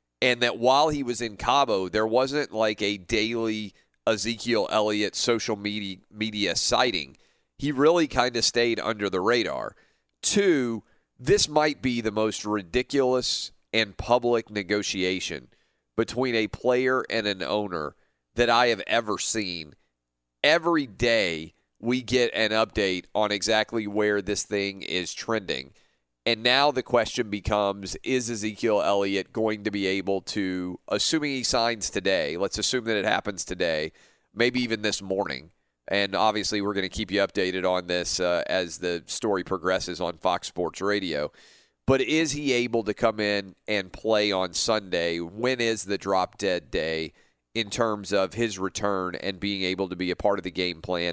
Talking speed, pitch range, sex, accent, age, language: 165 wpm, 95-115 Hz, male, American, 40-59, English